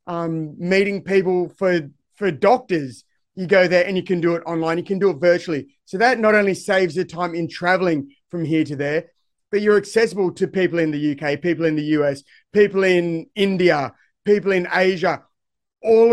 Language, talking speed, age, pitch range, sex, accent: English, 195 wpm, 30-49, 170-200 Hz, male, Australian